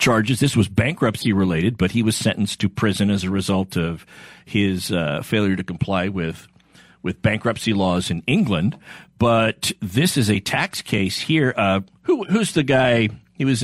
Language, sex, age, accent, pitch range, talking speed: English, male, 50-69, American, 105-145 Hz, 175 wpm